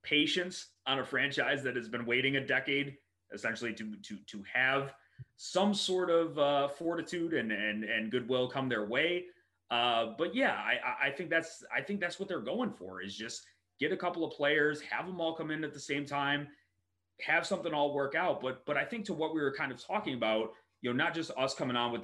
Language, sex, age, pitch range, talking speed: English, male, 30-49, 115-165 Hz, 225 wpm